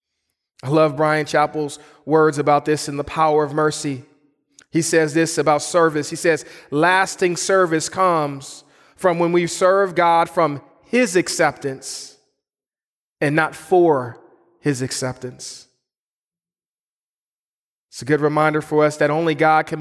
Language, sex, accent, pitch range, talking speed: English, male, American, 150-185 Hz, 135 wpm